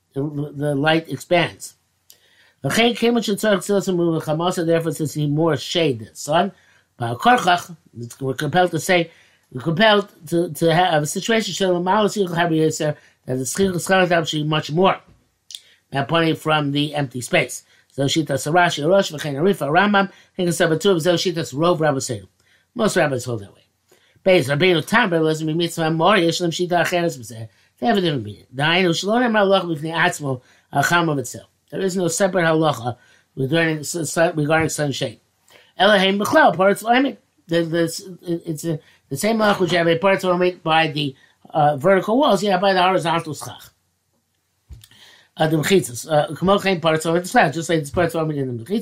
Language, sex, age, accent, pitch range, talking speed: English, male, 50-69, American, 145-185 Hz, 100 wpm